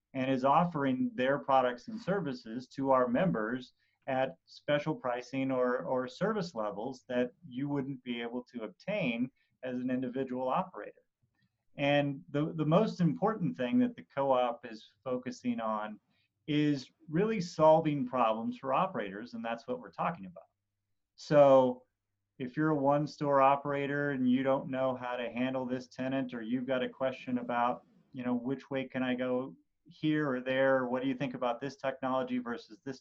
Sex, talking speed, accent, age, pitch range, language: male, 165 wpm, American, 30-49, 125-155 Hz, English